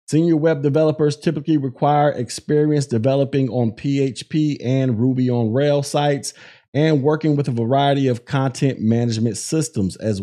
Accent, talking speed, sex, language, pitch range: American, 140 wpm, male, English, 120-150 Hz